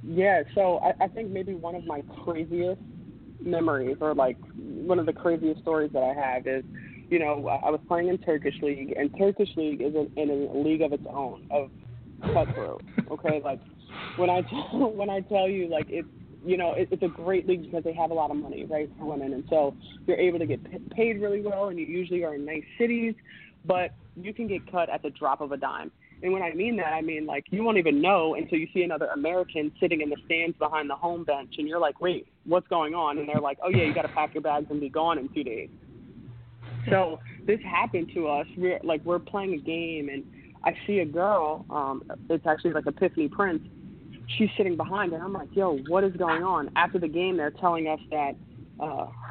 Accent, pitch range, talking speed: American, 150-185 Hz, 225 wpm